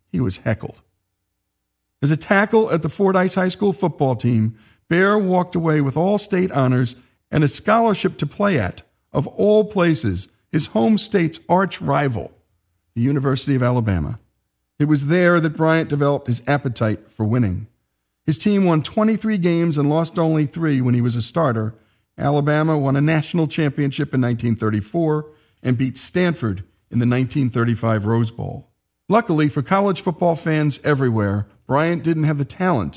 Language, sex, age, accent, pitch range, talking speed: English, male, 50-69, American, 115-165 Hz, 160 wpm